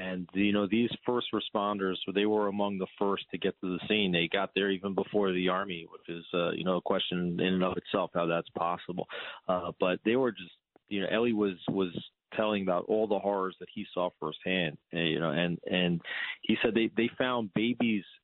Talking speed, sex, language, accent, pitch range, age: 215 wpm, male, English, American, 90-105 Hz, 30-49